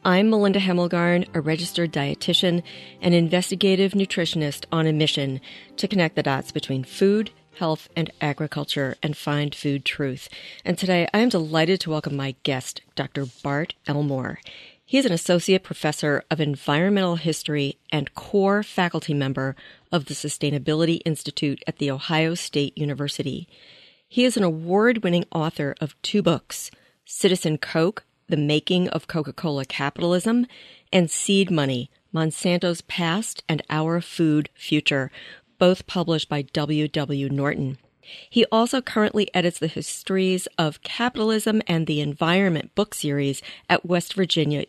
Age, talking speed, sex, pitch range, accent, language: 40-59, 140 wpm, female, 145-185 Hz, American, English